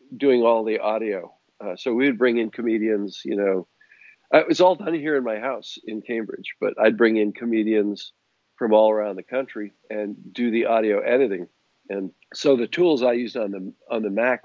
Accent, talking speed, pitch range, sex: American, 200 wpm, 105-120 Hz, male